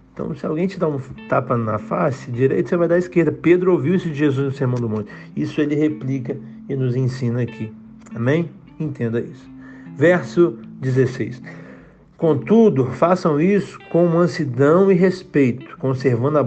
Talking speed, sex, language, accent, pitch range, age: 165 wpm, male, Portuguese, Brazilian, 125-165 Hz, 50-69